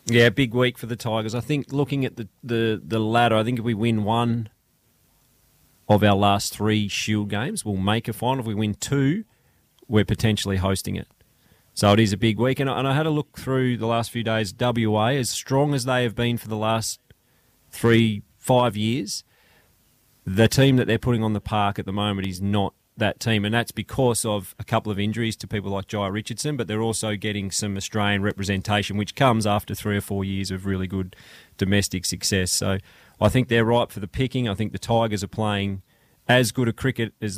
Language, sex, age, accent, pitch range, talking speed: English, male, 30-49, Australian, 100-120 Hz, 215 wpm